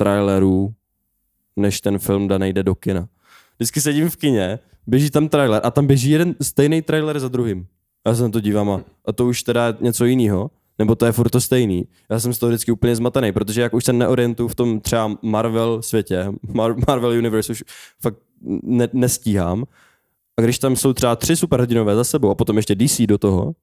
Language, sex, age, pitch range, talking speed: Czech, male, 20-39, 100-130 Hz, 205 wpm